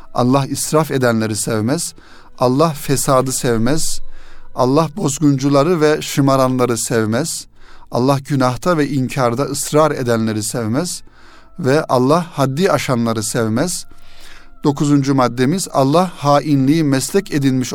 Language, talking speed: Turkish, 100 wpm